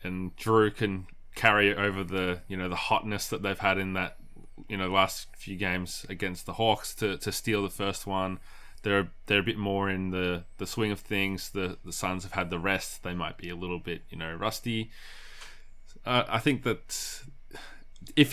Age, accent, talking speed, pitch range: 20-39, Australian, 200 wpm, 90-105 Hz